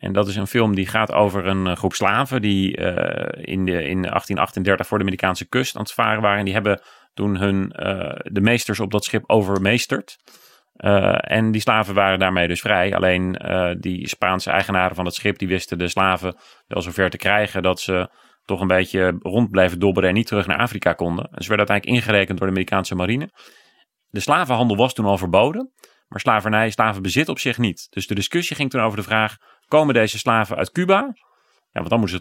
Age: 30-49